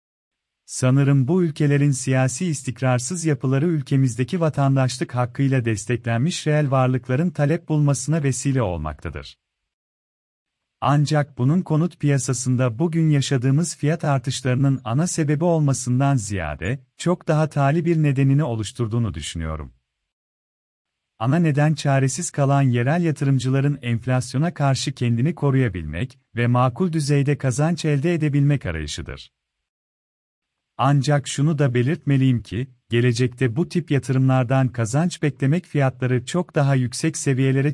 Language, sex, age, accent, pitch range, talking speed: Turkish, male, 40-59, native, 125-150 Hz, 110 wpm